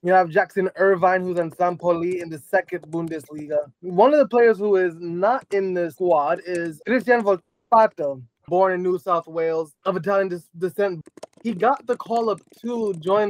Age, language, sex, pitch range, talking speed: 20-39, English, male, 155-185 Hz, 175 wpm